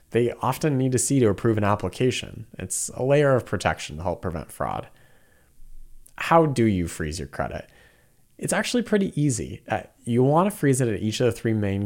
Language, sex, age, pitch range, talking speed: English, male, 30-49, 95-130 Hz, 195 wpm